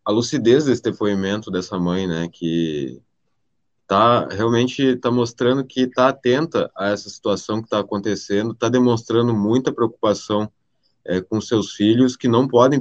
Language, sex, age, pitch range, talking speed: Portuguese, male, 20-39, 100-125 Hz, 150 wpm